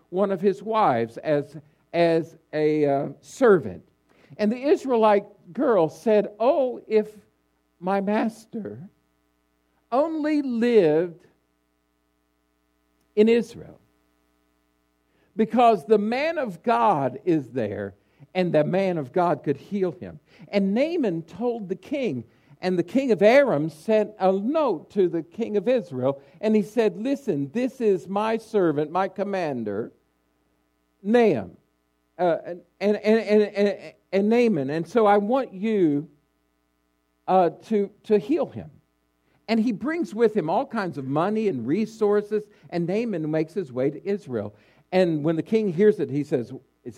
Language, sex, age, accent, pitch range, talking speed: English, male, 60-79, American, 140-210 Hz, 140 wpm